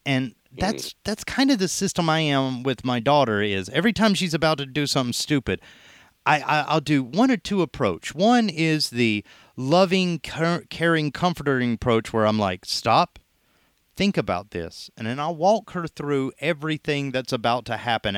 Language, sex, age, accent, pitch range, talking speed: English, male, 30-49, American, 125-175 Hz, 180 wpm